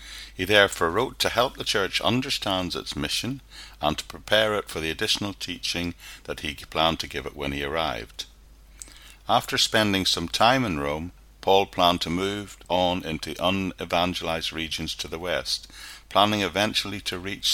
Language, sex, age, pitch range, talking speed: English, male, 60-79, 75-100 Hz, 165 wpm